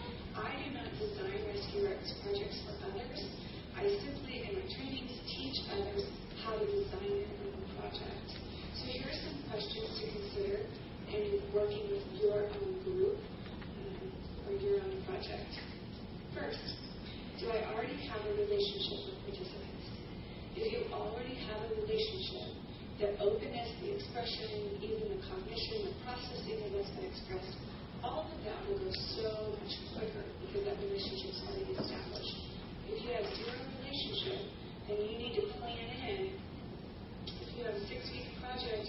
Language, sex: English, female